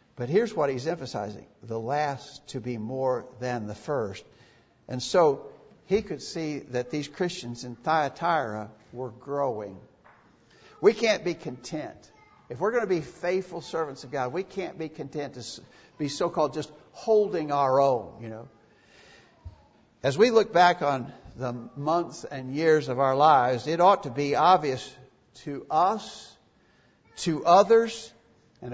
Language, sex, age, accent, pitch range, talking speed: English, male, 60-79, American, 125-175 Hz, 150 wpm